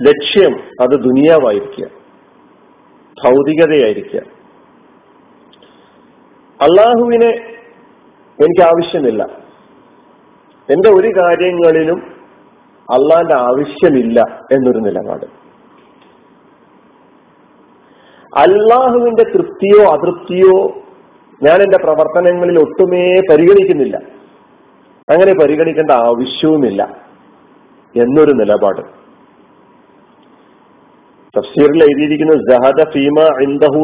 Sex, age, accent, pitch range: male, 50-69, native, 145-185 Hz